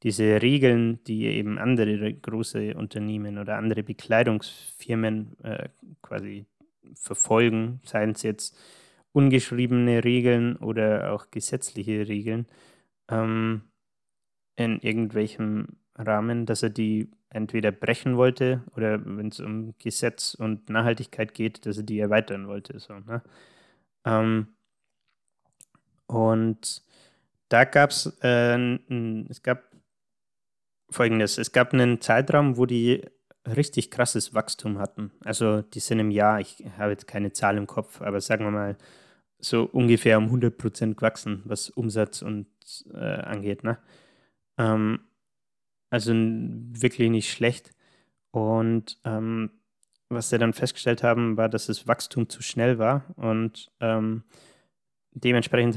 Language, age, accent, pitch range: German, 20-39, German, 110-120 Hz